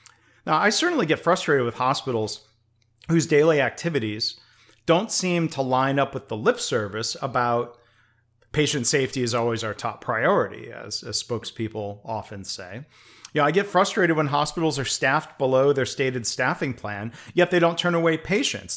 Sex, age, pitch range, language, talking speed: male, 40-59, 115-150 Hz, English, 170 wpm